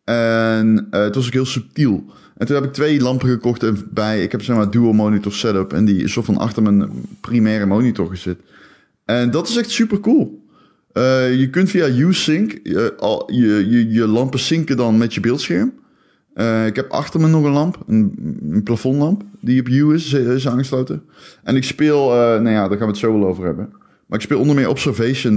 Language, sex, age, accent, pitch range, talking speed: Dutch, male, 20-39, Dutch, 105-135 Hz, 220 wpm